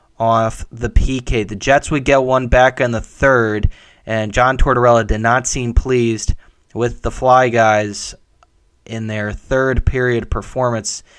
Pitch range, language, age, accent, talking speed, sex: 110-130 Hz, English, 20-39, American, 150 wpm, male